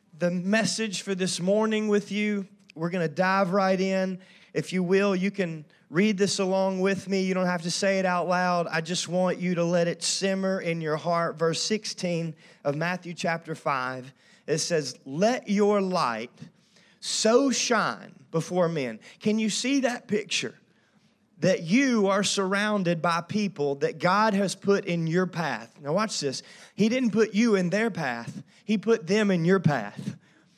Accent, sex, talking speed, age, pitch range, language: American, male, 180 wpm, 30-49, 175-215 Hz, English